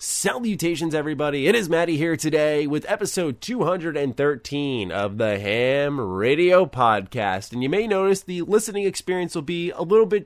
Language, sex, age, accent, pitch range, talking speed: English, male, 20-39, American, 115-160 Hz, 160 wpm